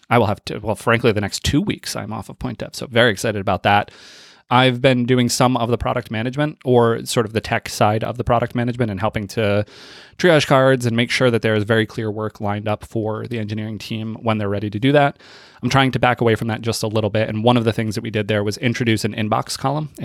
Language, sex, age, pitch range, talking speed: English, male, 20-39, 110-125 Hz, 265 wpm